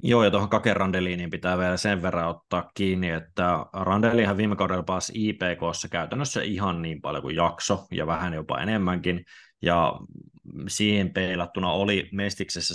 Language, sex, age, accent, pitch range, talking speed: Finnish, male, 20-39, native, 85-95 Hz, 145 wpm